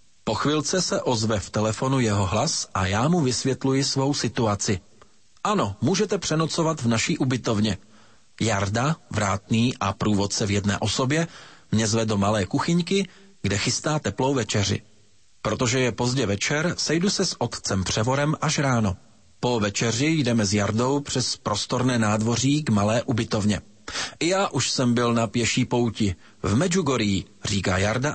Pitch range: 105-150 Hz